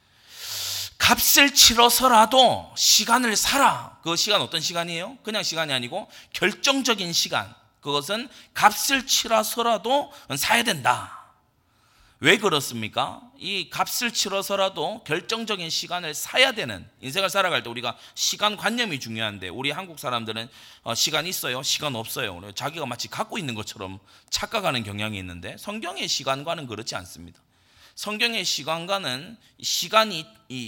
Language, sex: Korean, male